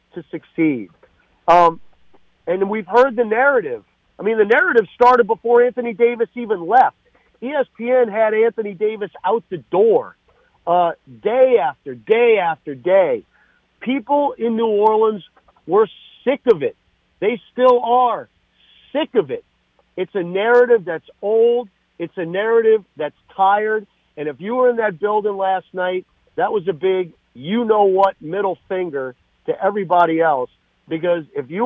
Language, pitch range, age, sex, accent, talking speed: English, 160-220 Hz, 50-69, male, American, 145 wpm